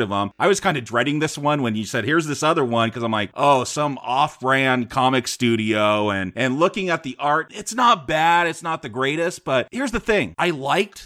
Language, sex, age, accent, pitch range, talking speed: English, male, 30-49, American, 120-170 Hz, 235 wpm